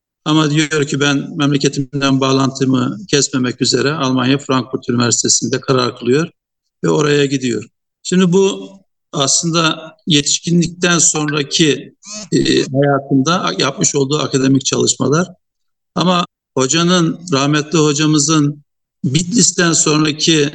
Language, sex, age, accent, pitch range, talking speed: Turkish, male, 60-79, native, 135-160 Hz, 95 wpm